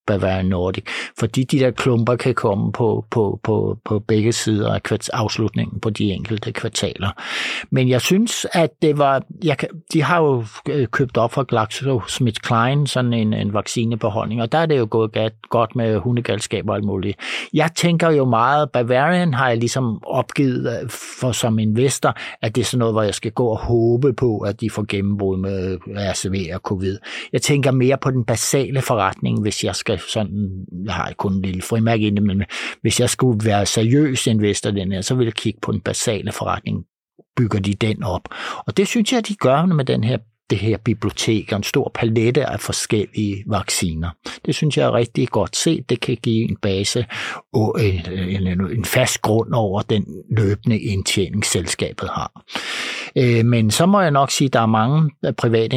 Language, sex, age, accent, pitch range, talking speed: Danish, male, 60-79, native, 105-130 Hz, 185 wpm